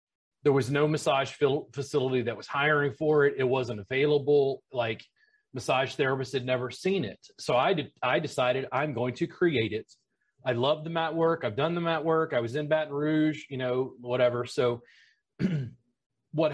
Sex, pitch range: male, 135-180 Hz